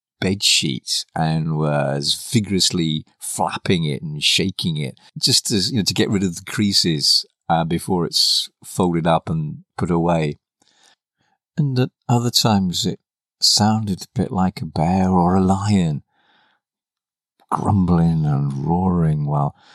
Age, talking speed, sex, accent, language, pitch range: 50-69, 130 wpm, male, British, English, 75-95 Hz